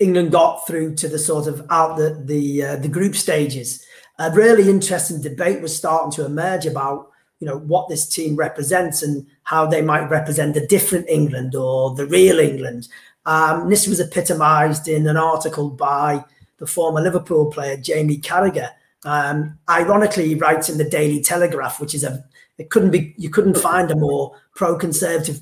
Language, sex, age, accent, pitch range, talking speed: English, male, 30-49, British, 150-170 Hz, 175 wpm